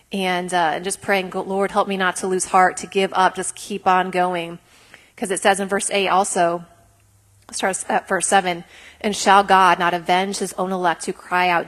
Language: English